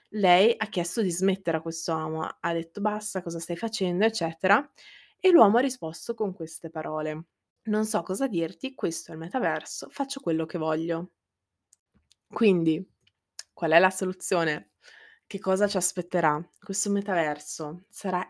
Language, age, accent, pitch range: Italian, 20-39, native, 170-205 Hz